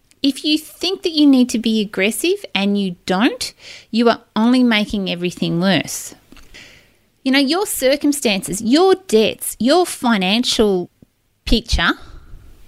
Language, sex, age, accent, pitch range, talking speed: English, female, 30-49, Australian, 195-260 Hz, 130 wpm